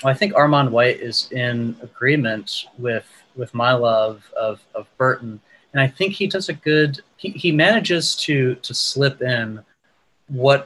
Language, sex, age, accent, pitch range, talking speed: English, male, 30-49, American, 115-150 Hz, 165 wpm